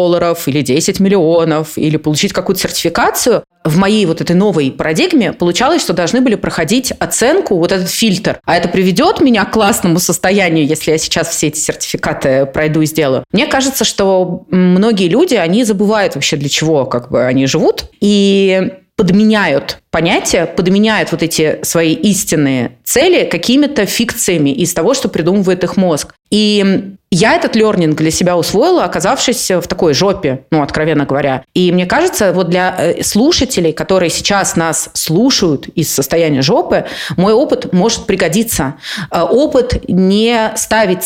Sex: female